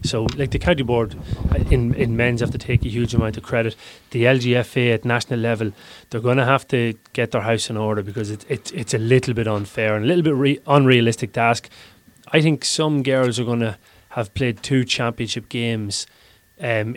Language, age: English, 30-49